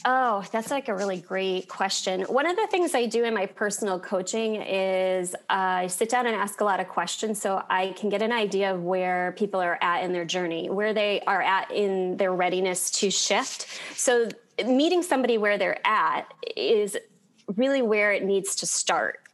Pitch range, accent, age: 200-275 Hz, American, 20-39